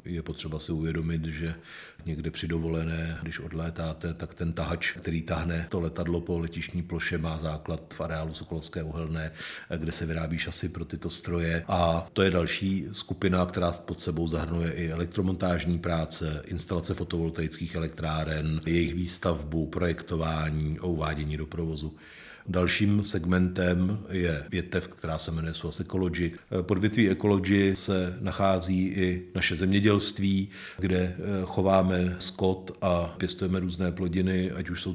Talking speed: 135 wpm